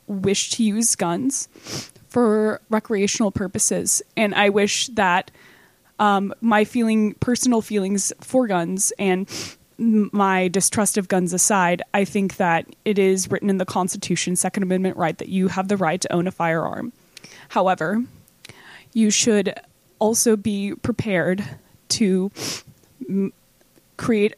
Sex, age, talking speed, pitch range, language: female, 20-39, 135 wpm, 180-210 Hz, English